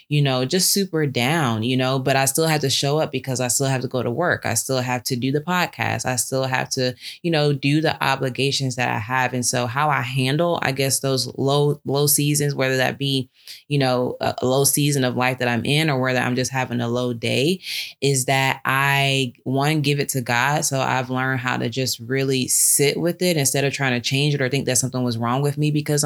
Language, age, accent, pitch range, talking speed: English, 20-39, American, 125-135 Hz, 245 wpm